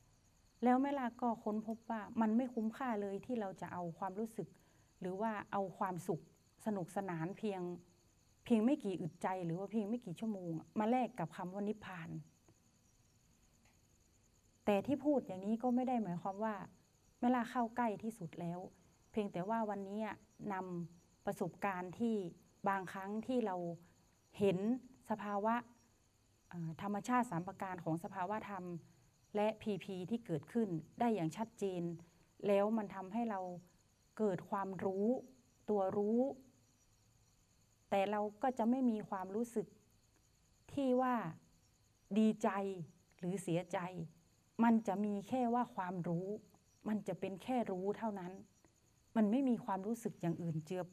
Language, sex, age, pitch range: Thai, female, 30-49, 170-225 Hz